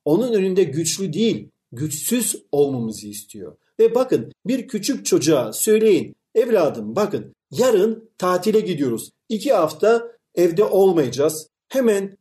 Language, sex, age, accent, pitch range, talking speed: Turkish, male, 50-69, native, 150-225 Hz, 115 wpm